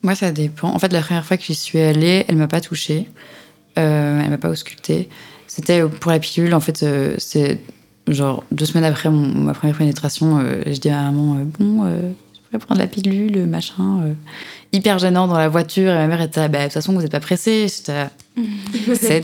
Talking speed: 225 wpm